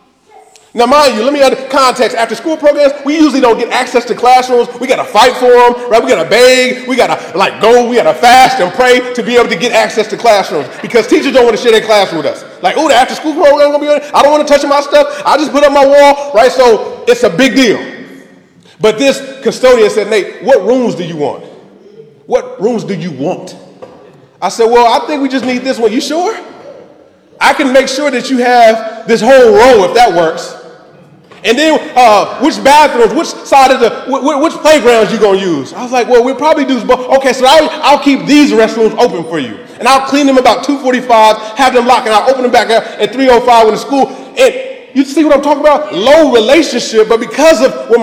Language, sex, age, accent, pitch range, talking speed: English, male, 30-49, American, 230-295 Hz, 230 wpm